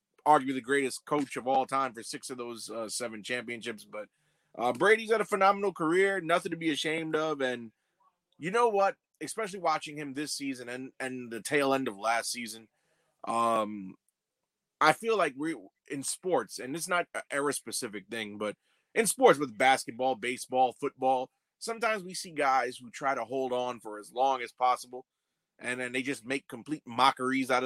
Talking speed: 185 wpm